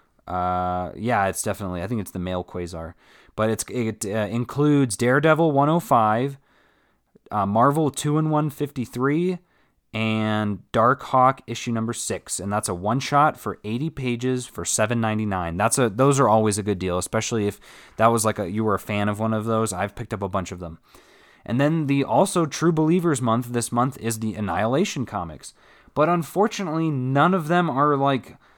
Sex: male